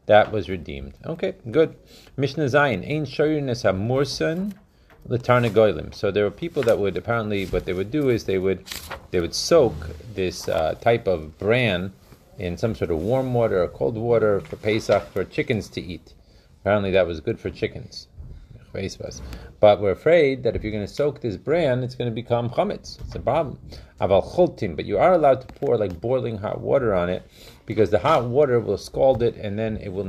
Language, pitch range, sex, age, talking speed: Hebrew, 95-130 Hz, male, 30-49, 195 wpm